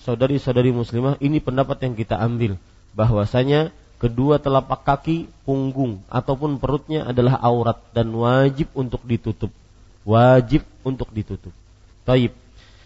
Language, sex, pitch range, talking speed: Malay, male, 110-140 Hz, 110 wpm